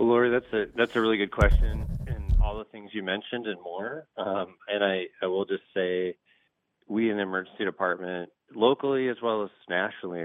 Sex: male